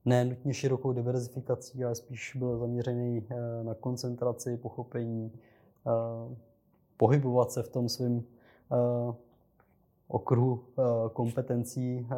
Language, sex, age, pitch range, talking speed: Czech, male, 20-39, 115-125 Hz, 90 wpm